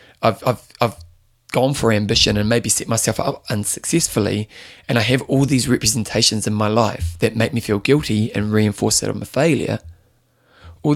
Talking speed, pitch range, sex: 180 wpm, 105-125 Hz, male